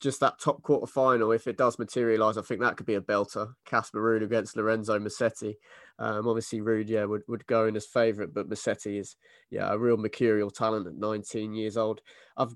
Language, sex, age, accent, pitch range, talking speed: English, male, 20-39, British, 105-120 Hz, 210 wpm